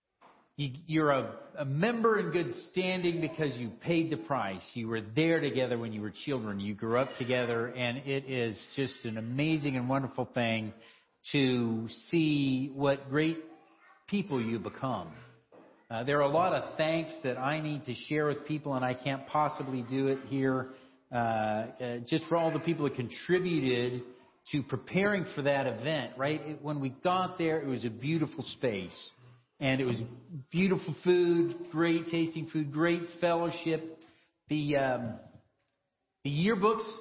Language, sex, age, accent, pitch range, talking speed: English, male, 50-69, American, 130-165 Hz, 160 wpm